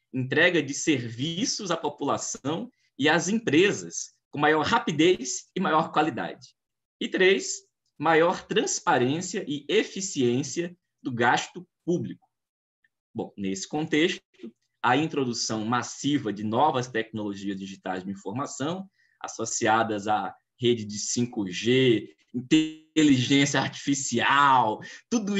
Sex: male